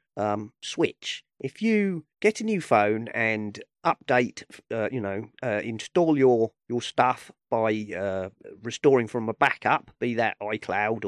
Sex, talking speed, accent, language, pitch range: male, 145 wpm, British, English, 95-140 Hz